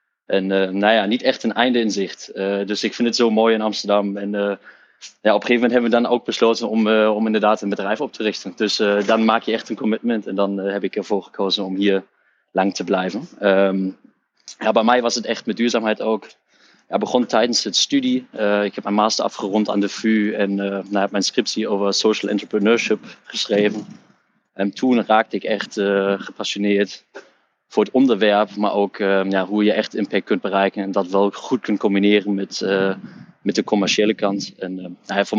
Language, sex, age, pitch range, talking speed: Dutch, male, 20-39, 100-110 Hz, 220 wpm